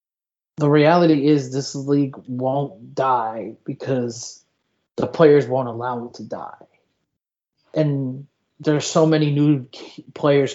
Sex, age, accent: male, 30-49, American